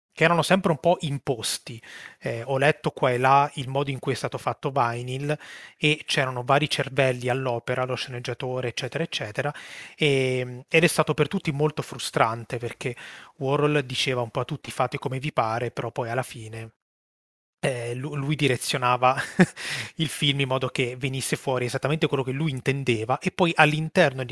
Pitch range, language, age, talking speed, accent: 125-150 Hz, Italian, 30-49, 175 wpm, native